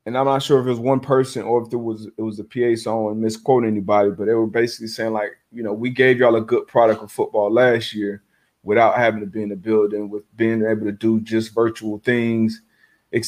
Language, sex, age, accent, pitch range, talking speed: English, male, 30-49, American, 110-140 Hz, 235 wpm